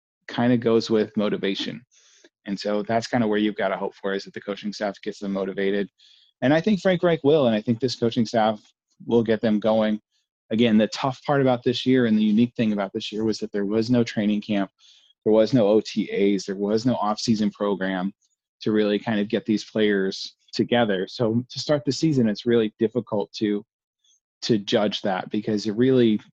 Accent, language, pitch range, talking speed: American, English, 105-120 Hz, 210 wpm